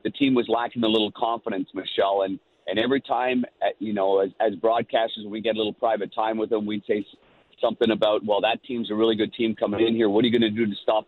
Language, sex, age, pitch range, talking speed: English, male, 50-69, 110-130 Hz, 260 wpm